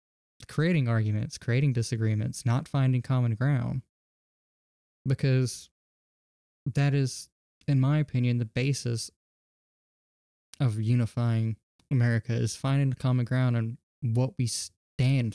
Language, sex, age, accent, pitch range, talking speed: English, male, 10-29, American, 115-150 Hz, 105 wpm